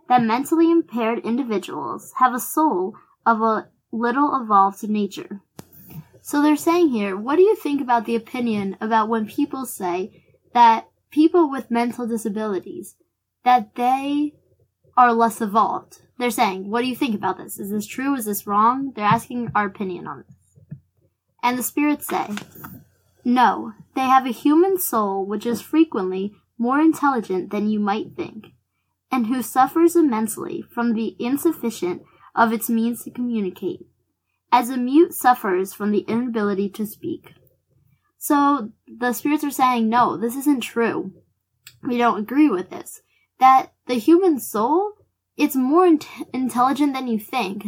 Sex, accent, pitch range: female, American, 210-275 Hz